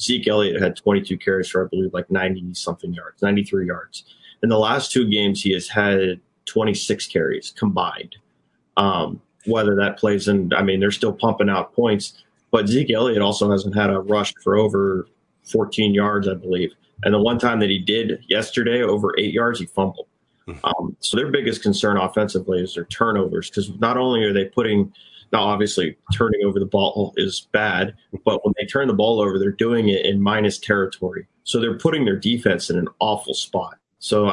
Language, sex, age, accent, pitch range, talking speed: English, male, 30-49, American, 95-105 Hz, 190 wpm